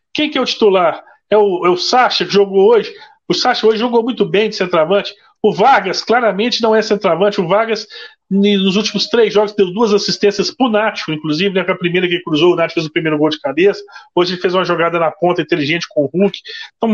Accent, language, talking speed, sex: Brazilian, Portuguese, 230 wpm, male